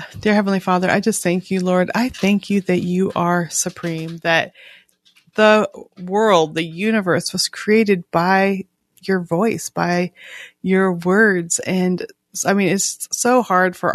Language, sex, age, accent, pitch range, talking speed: English, female, 30-49, American, 175-195 Hz, 150 wpm